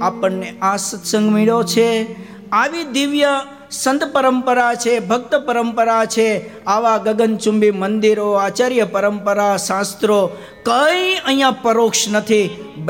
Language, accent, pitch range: Gujarati, native, 220-280 Hz